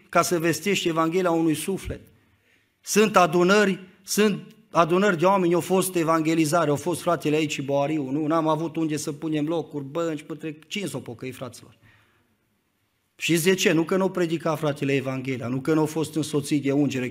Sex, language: male, Romanian